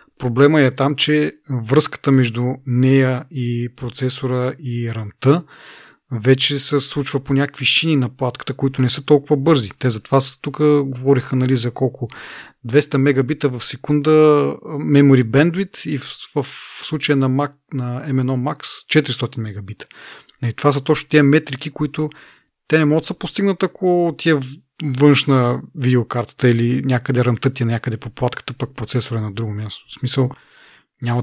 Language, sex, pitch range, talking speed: Bulgarian, male, 125-150 Hz, 155 wpm